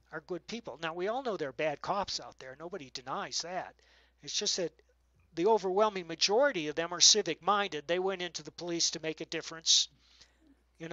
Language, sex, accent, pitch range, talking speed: English, male, American, 155-195 Hz, 200 wpm